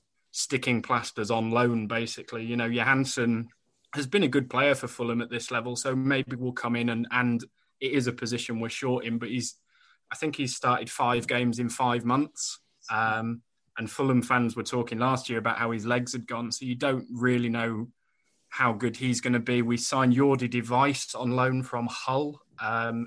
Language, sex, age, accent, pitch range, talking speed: English, male, 20-39, British, 120-135 Hz, 200 wpm